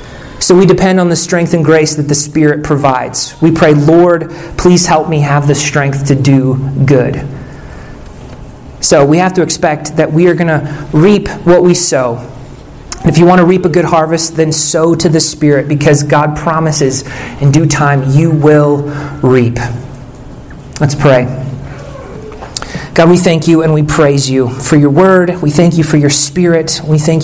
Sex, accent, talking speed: male, American, 180 wpm